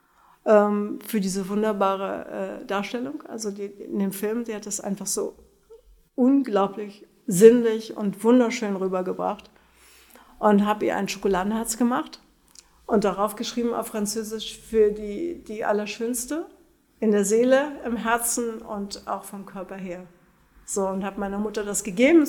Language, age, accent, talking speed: German, 50-69, German, 135 wpm